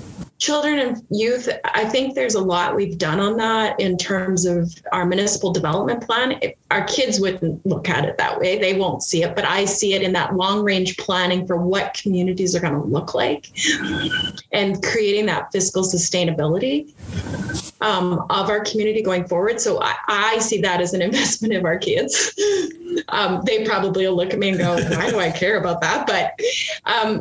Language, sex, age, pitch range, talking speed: English, female, 30-49, 180-235 Hz, 195 wpm